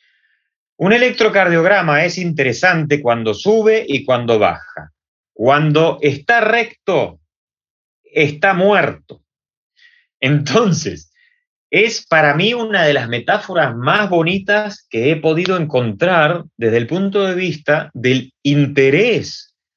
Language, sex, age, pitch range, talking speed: Romanian, male, 30-49, 115-175 Hz, 105 wpm